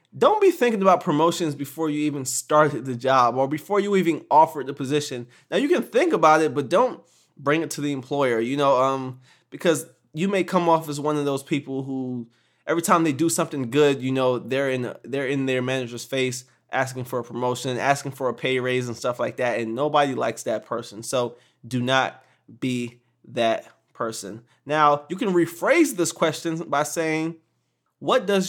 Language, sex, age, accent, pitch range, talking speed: English, male, 20-39, American, 130-165 Hz, 195 wpm